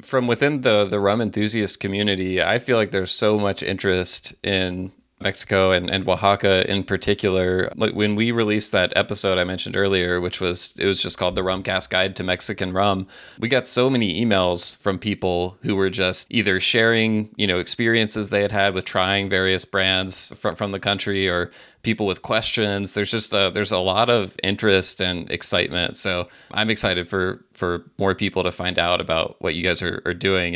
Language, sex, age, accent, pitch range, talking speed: English, male, 30-49, American, 95-110 Hz, 195 wpm